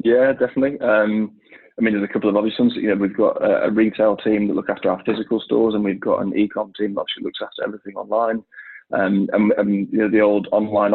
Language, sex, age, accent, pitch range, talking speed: English, male, 20-39, British, 100-110 Hz, 245 wpm